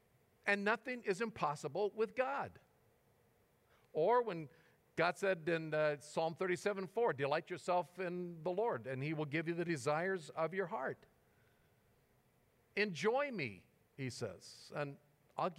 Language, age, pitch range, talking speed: English, 50-69, 150-210 Hz, 140 wpm